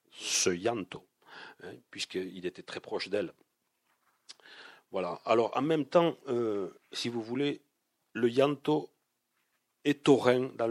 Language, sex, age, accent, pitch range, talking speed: French, male, 50-69, French, 105-125 Hz, 125 wpm